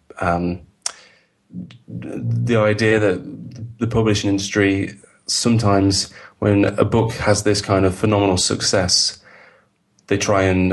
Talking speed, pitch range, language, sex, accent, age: 110 wpm, 90-100 Hz, English, male, British, 30-49